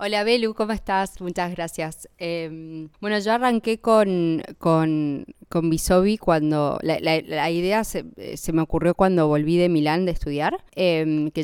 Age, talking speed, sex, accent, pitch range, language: 20-39, 165 wpm, female, Argentinian, 155-185 Hz, Spanish